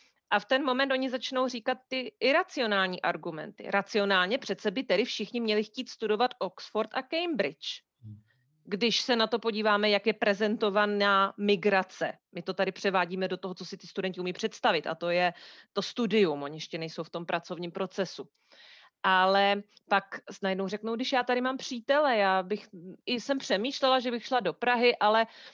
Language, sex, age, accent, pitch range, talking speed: Czech, female, 30-49, native, 195-245 Hz, 175 wpm